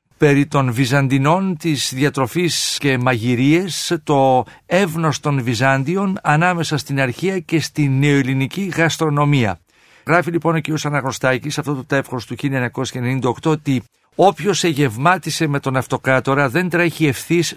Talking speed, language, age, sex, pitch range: 125 wpm, Greek, 50-69, male, 130-165 Hz